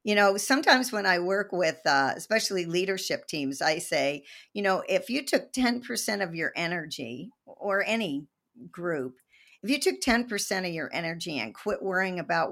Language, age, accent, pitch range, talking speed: English, 50-69, American, 150-210 Hz, 175 wpm